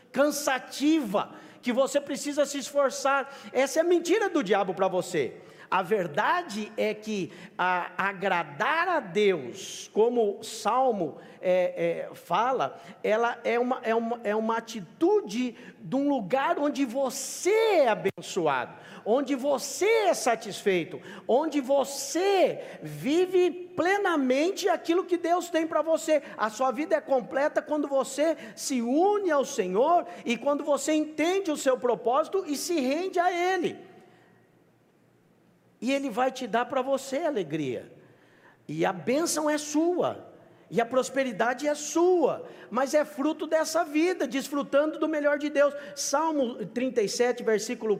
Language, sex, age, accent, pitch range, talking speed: English, male, 50-69, Brazilian, 215-305 Hz, 140 wpm